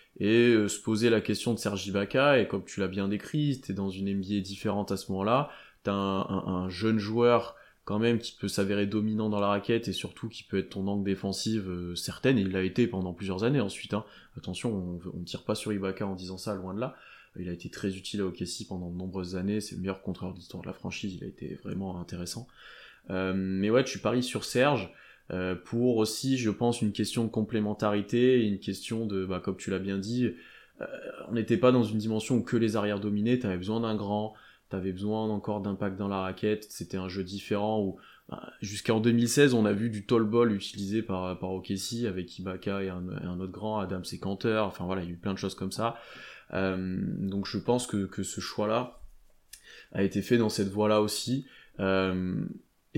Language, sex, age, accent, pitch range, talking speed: French, male, 20-39, French, 95-115 Hz, 225 wpm